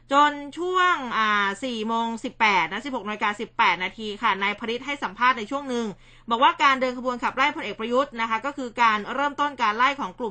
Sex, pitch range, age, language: female, 210-260 Hz, 20-39, Thai